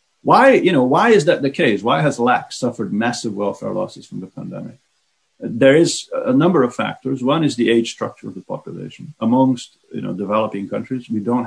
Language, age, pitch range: English, 50-69, 105-140 Hz